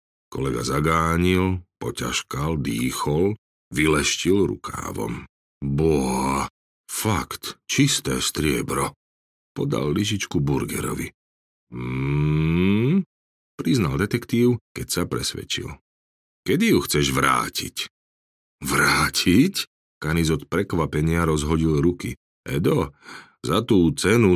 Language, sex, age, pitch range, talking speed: Slovak, male, 40-59, 70-95 Hz, 80 wpm